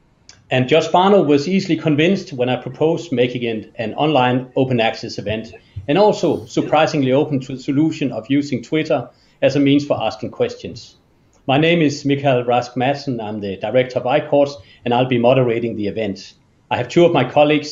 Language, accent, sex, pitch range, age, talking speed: Danish, native, male, 125-150 Hz, 40-59, 185 wpm